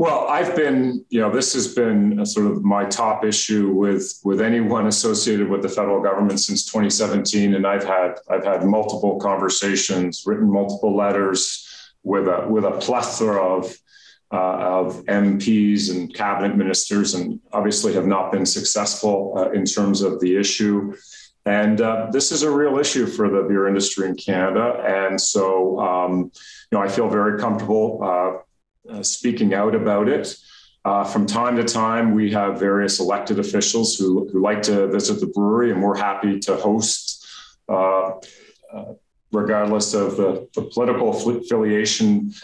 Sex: male